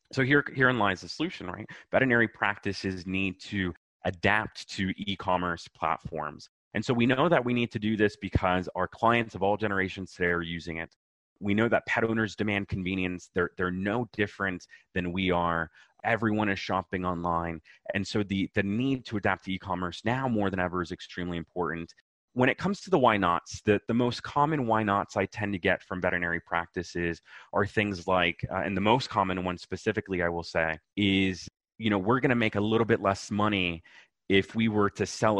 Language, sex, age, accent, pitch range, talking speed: English, male, 30-49, American, 90-115 Hz, 200 wpm